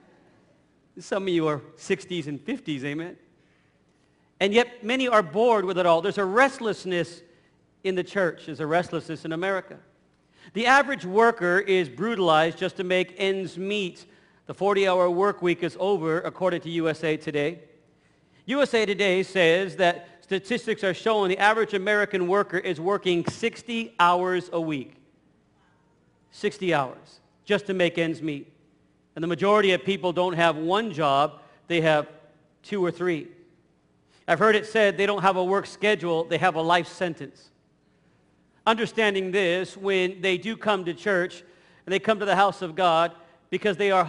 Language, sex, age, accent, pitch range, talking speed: English, male, 50-69, American, 170-205 Hz, 160 wpm